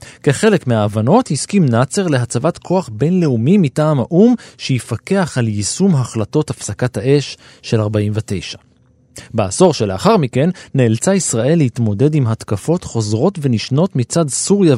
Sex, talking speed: male, 120 wpm